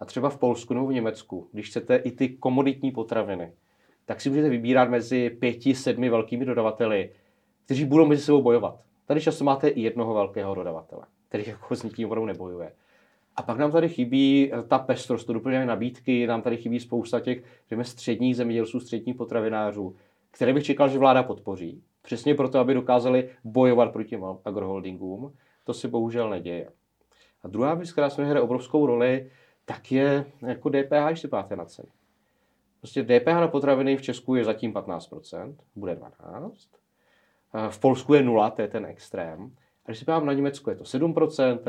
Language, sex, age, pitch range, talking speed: Czech, male, 30-49, 115-135 Hz, 170 wpm